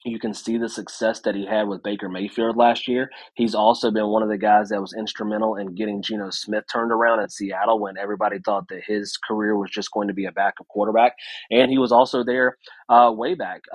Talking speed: 230 wpm